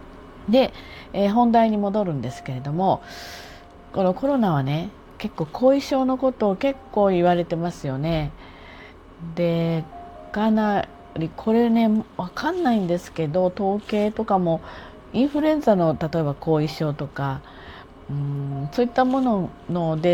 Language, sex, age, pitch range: Japanese, female, 40-59, 145-215 Hz